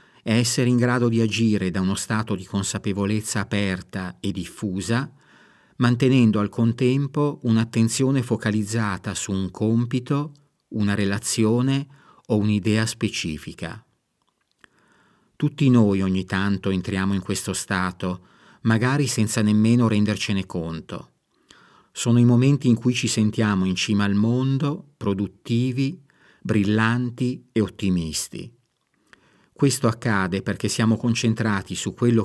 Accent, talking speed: native, 115 wpm